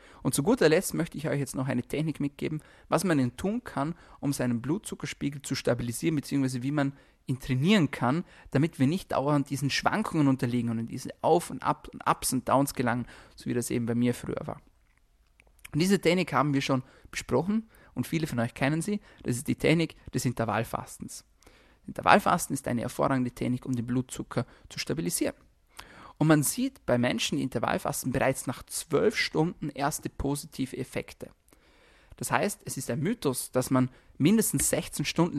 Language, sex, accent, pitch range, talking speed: German, male, German, 125-155 Hz, 185 wpm